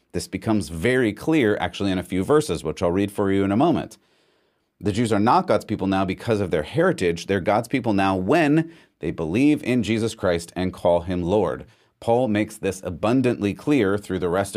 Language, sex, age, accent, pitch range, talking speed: English, male, 30-49, American, 95-115 Hz, 205 wpm